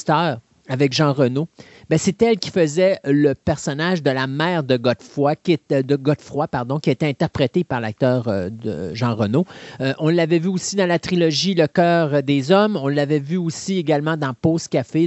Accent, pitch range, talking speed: Canadian, 145-195 Hz, 185 wpm